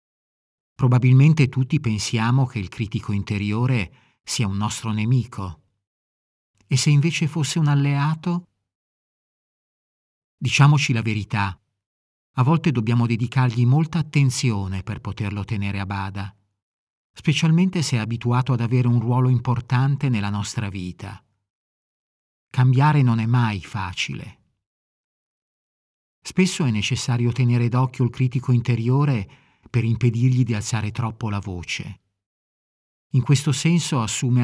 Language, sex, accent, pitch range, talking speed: Italian, male, native, 105-135 Hz, 115 wpm